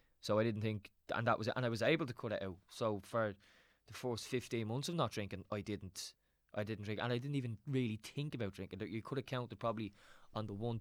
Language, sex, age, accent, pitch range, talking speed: English, male, 20-39, Irish, 100-115 Hz, 255 wpm